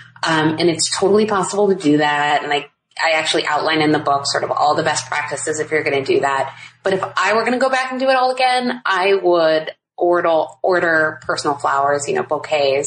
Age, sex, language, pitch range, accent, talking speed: 20-39, female, English, 145-185 Hz, American, 235 wpm